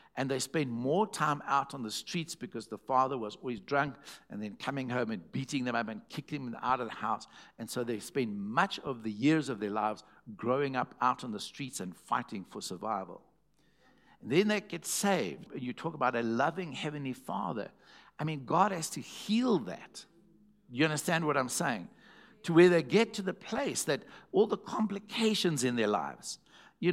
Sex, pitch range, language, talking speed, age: male, 130-180 Hz, English, 200 wpm, 60-79